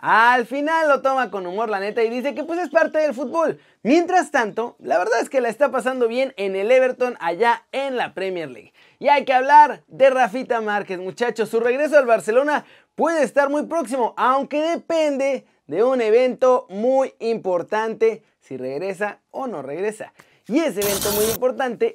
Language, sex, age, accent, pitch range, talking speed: Spanish, male, 30-49, Mexican, 210-265 Hz, 185 wpm